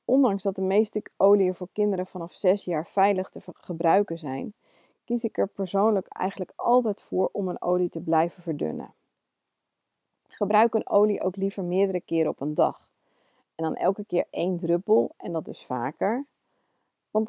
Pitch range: 170-210 Hz